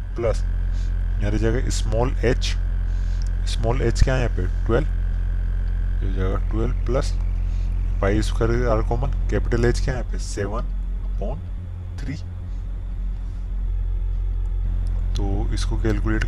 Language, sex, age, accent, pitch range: Hindi, male, 20-39, native, 90-105 Hz